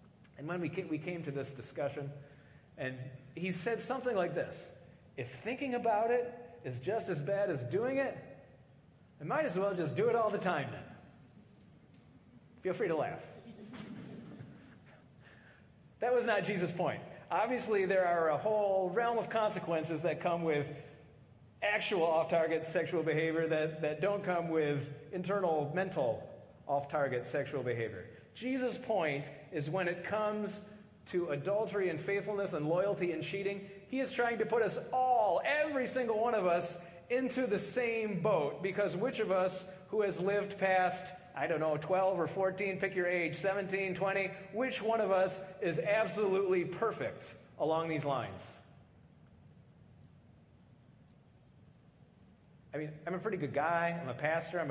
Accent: American